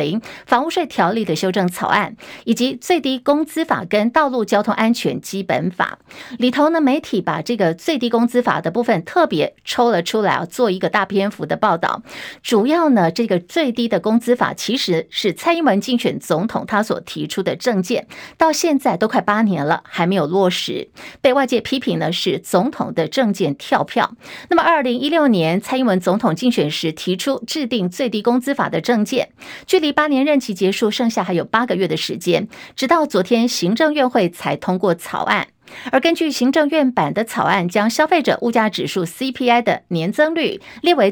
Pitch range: 195-270 Hz